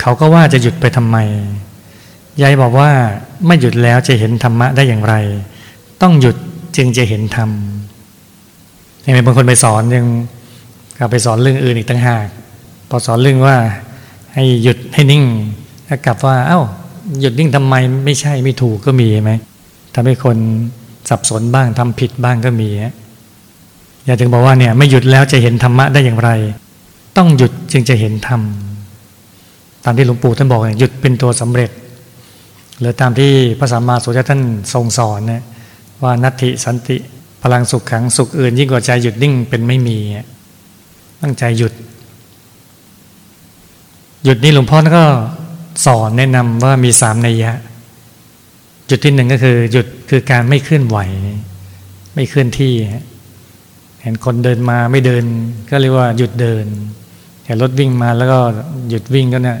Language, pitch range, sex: Thai, 110-130 Hz, male